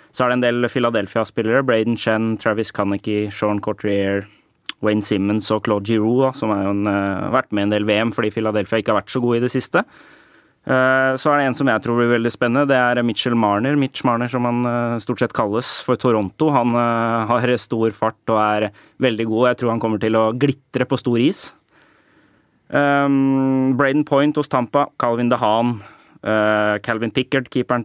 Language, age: English, 20-39